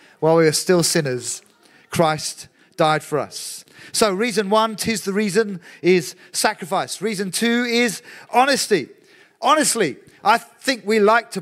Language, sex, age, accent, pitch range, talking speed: English, male, 40-59, British, 165-205 Hz, 140 wpm